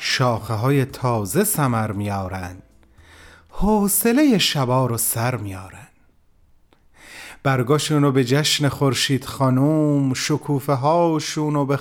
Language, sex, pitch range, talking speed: Persian, male, 135-225 Hz, 85 wpm